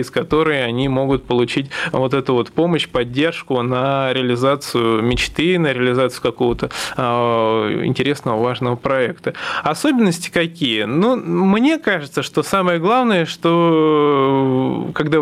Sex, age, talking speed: male, 20-39, 115 wpm